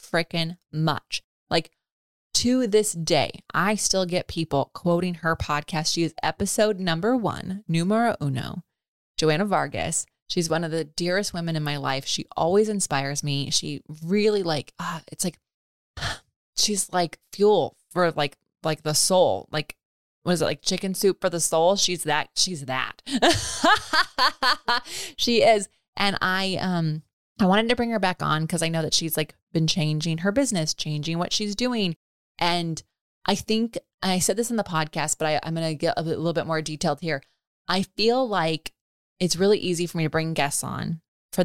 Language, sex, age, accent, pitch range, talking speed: English, female, 20-39, American, 155-185 Hz, 180 wpm